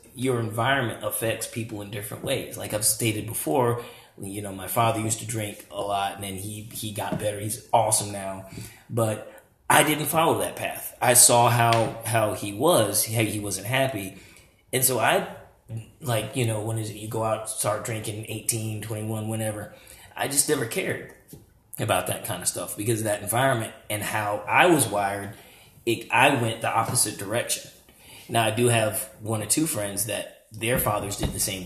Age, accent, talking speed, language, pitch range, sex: 30-49, American, 190 wpm, English, 105-120 Hz, male